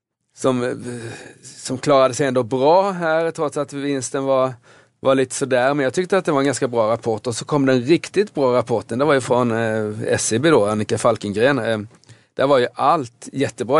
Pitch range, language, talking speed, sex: 115-140 Hz, Swedish, 205 wpm, male